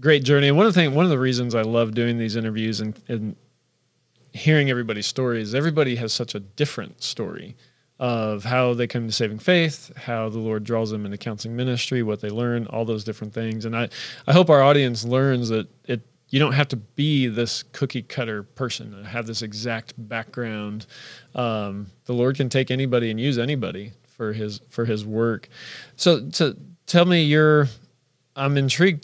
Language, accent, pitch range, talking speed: English, American, 115-135 Hz, 190 wpm